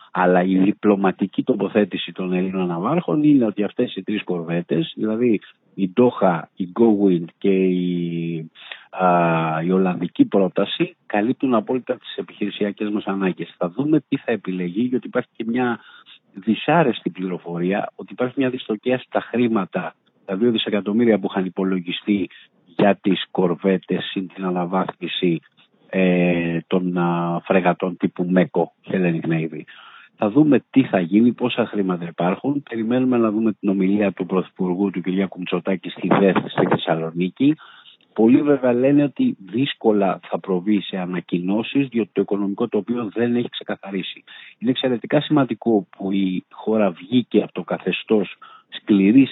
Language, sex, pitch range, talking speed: Greek, male, 90-115 Hz, 140 wpm